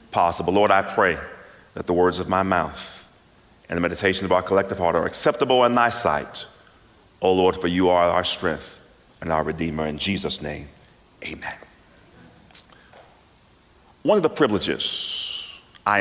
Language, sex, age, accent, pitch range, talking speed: English, male, 40-59, American, 85-110 Hz, 155 wpm